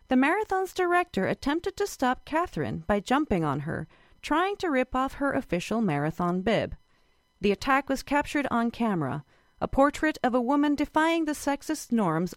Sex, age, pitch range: female, 40-59, 200-290 Hz